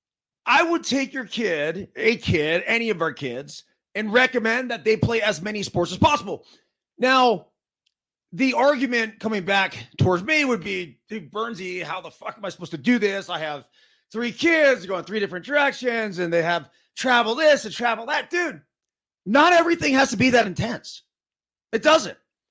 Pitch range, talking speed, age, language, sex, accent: 190-255 Hz, 180 wpm, 30-49, English, male, American